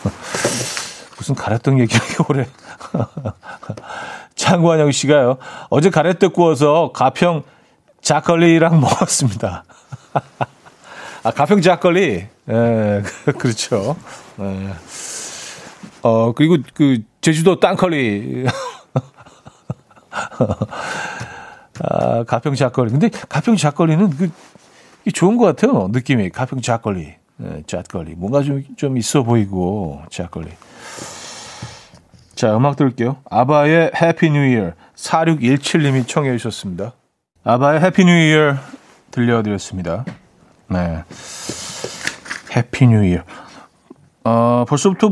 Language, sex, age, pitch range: Korean, male, 40-59, 115-165 Hz